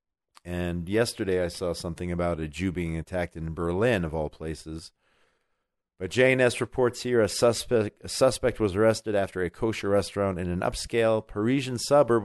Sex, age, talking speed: male, 40-59, 165 wpm